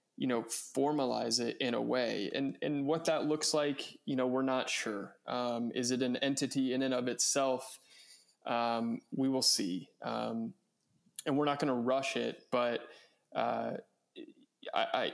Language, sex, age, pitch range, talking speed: English, male, 20-39, 120-140 Hz, 165 wpm